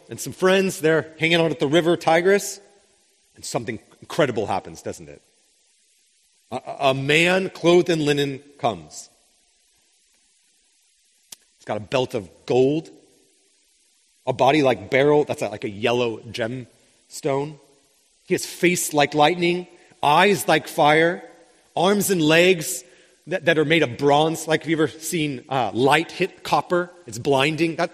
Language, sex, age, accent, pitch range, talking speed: English, male, 30-49, American, 130-175 Hz, 145 wpm